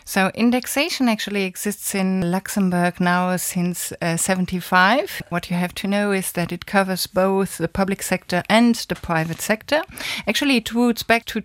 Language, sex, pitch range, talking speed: English, female, 180-225 Hz, 170 wpm